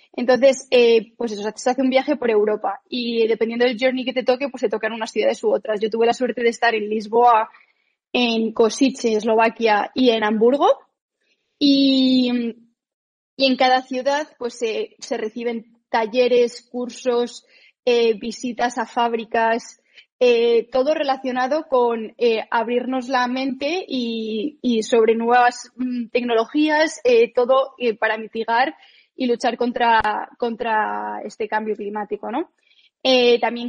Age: 20-39